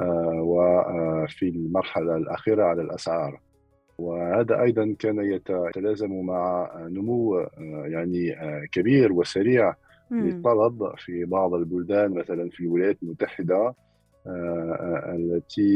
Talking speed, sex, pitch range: 90 wpm, male, 85-95 Hz